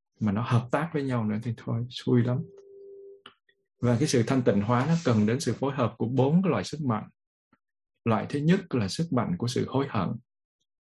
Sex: male